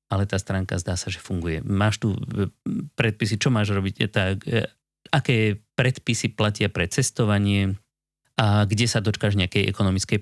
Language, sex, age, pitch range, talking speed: Slovak, male, 30-49, 100-130 Hz, 145 wpm